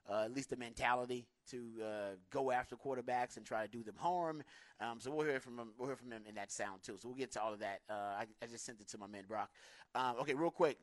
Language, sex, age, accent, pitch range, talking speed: English, male, 30-49, American, 115-130 Hz, 290 wpm